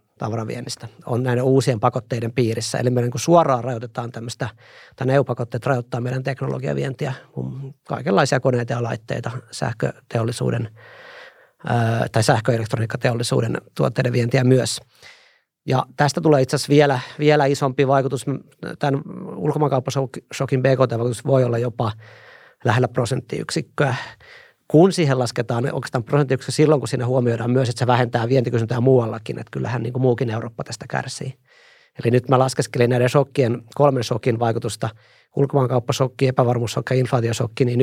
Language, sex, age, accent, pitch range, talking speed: Finnish, male, 40-59, native, 120-135 Hz, 130 wpm